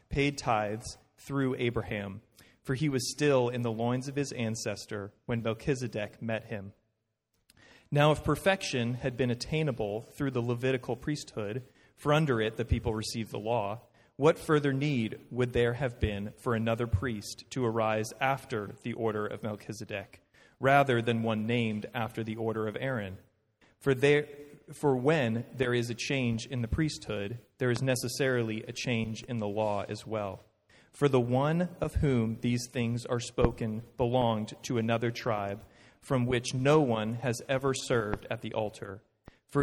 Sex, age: male, 30-49